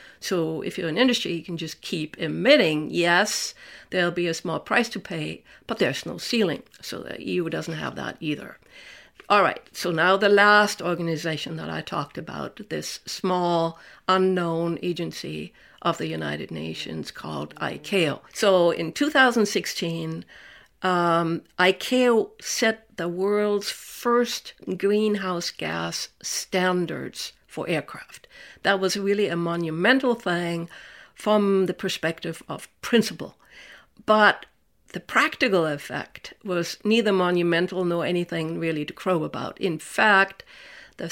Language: English